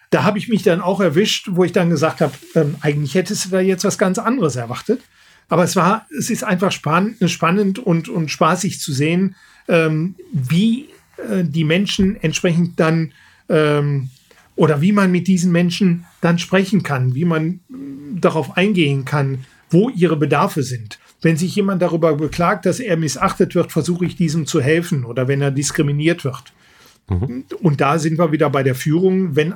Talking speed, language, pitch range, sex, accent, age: 170 wpm, German, 150-190 Hz, male, German, 40-59